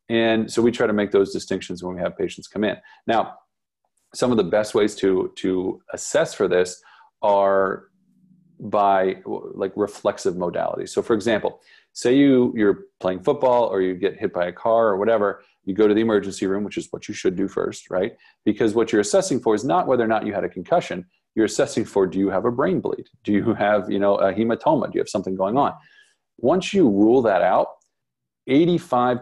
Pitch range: 95-130 Hz